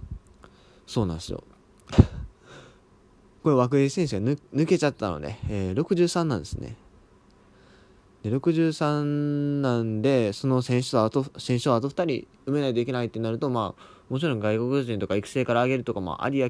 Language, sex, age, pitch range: Japanese, male, 20-39, 105-145 Hz